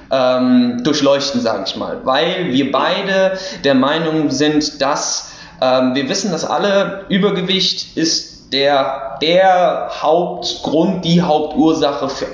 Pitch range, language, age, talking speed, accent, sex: 135-195 Hz, German, 20-39, 115 wpm, German, male